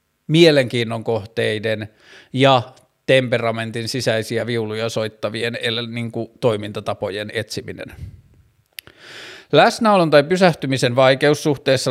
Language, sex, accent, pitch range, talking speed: Finnish, male, native, 115-135 Hz, 75 wpm